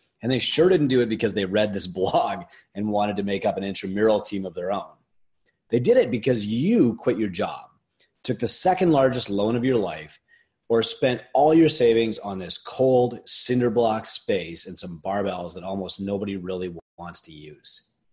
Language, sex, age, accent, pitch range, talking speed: English, male, 30-49, American, 100-145 Hz, 195 wpm